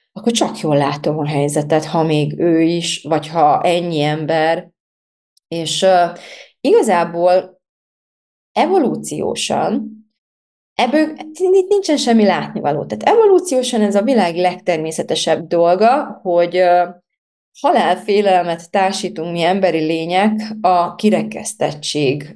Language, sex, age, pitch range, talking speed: Hungarian, female, 30-49, 155-200 Hz, 100 wpm